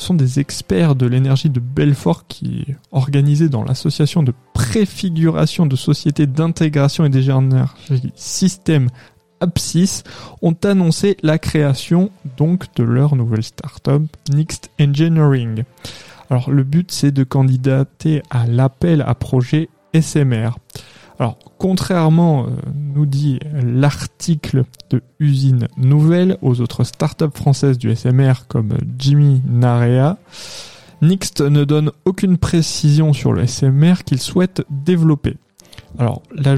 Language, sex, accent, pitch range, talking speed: French, male, French, 130-160 Hz, 120 wpm